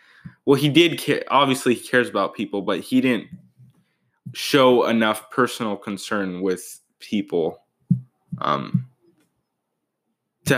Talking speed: 110 wpm